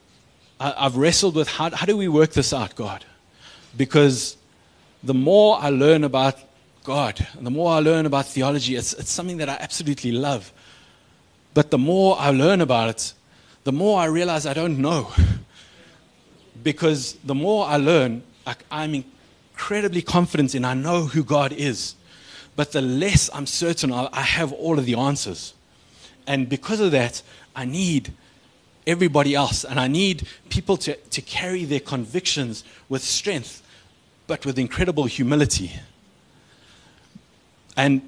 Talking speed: 155 wpm